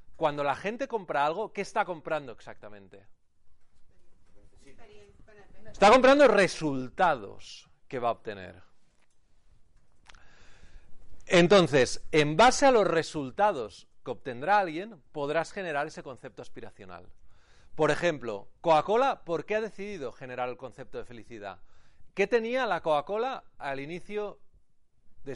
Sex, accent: male, Spanish